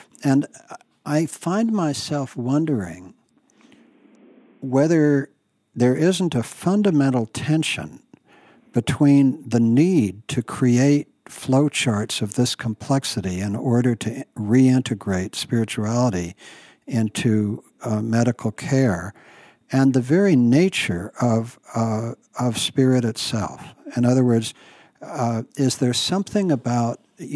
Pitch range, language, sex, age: 110-140 Hz, English, male, 60-79